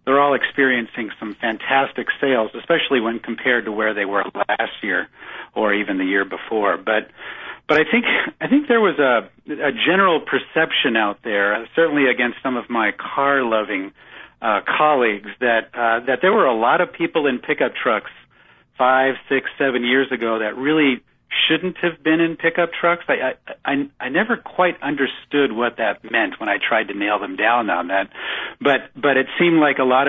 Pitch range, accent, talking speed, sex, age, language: 115-150 Hz, American, 185 wpm, male, 50-69, English